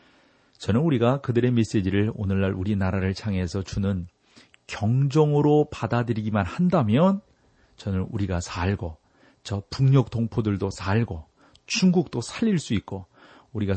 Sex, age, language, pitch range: male, 40-59, Korean, 95-125 Hz